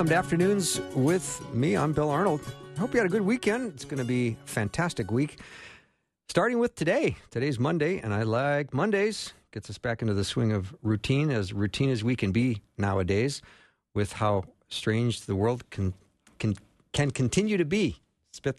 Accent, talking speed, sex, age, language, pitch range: American, 180 wpm, male, 50-69, English, 100-135 Hz